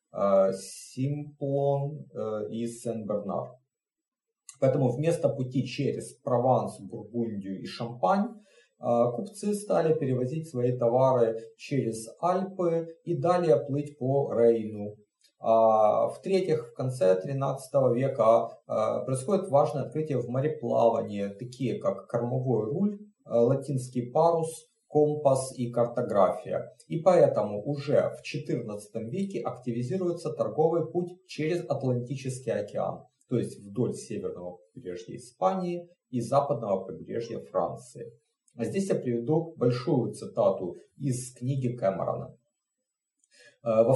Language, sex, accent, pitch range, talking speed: Russian, male, native, 115-165 Hz, 100 wpm